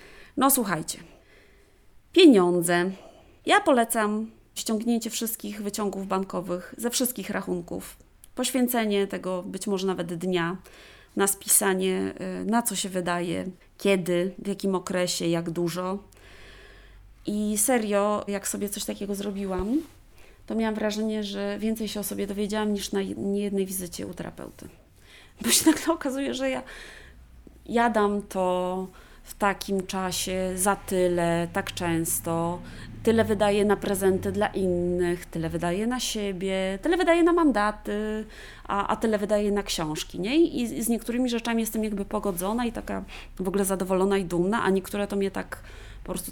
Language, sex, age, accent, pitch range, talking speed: Polish, female, 20-39, native, 185-220 Hz, 145 wpm